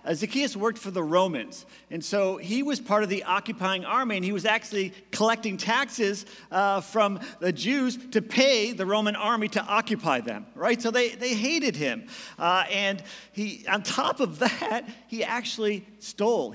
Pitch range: 155-220 Hz